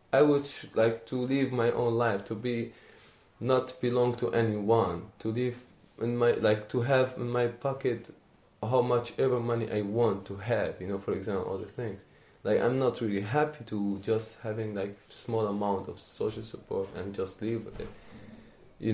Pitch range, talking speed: 105-130 Hz, 185 wpm